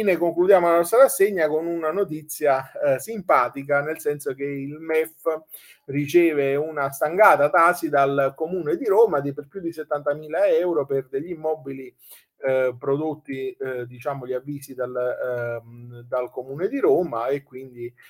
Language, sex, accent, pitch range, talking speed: Italian, male, native, 115-160 Hz, 145 wpm